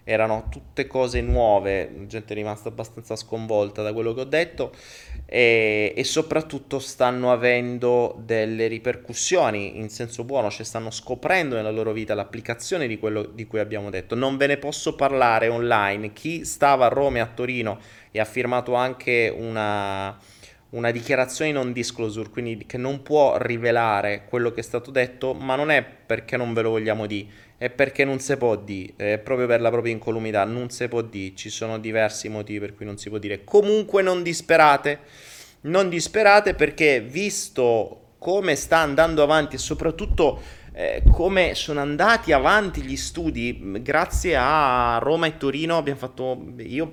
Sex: male